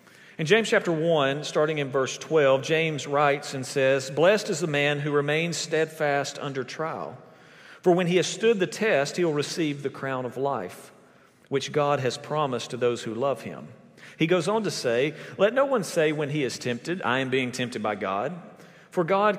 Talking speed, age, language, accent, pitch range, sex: 200 wpm, 40-59, English, American, 130-165 Hz, male